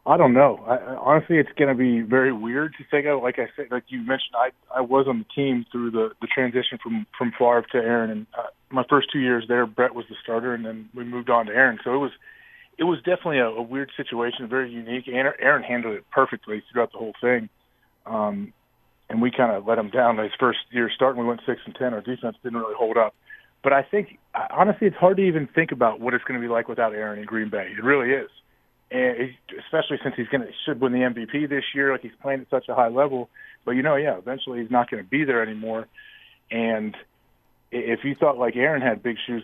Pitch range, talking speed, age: 115-140 Hz, 240 wpm, 30-49